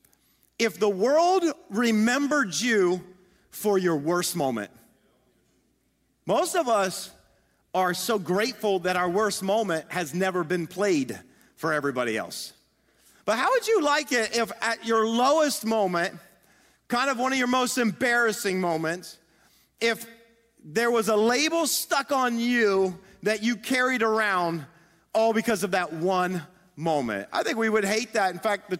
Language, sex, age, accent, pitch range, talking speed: English, male, 40-59, American, 180-245 Hz, 150 wpm